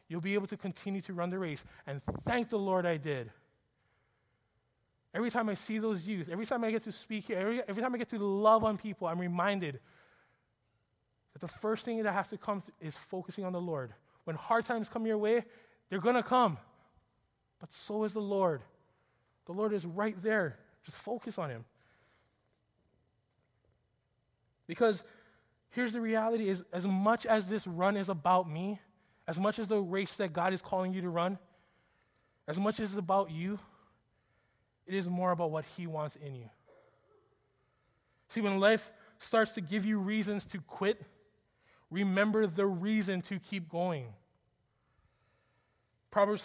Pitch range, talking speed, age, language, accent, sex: 130-210 Hz, 170 wpm, 20-39, English, American, male